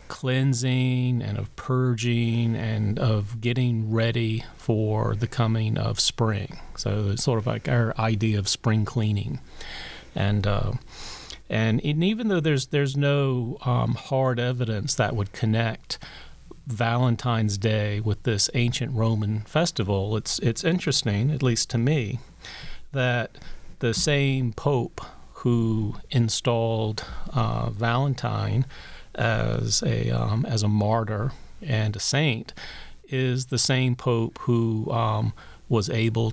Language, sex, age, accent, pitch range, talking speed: English, male, 40-59, American, 105-125 Hz, 125 wpm